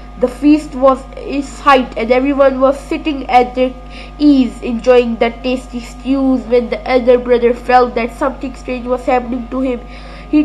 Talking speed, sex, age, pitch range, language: 165 wpm, female, 20-39, 245-315 Hz, English